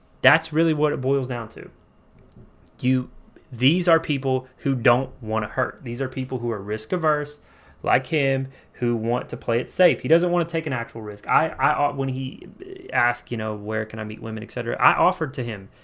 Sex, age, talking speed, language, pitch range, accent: male, 30-49, 210 wpm, English, 120-150 Hz, American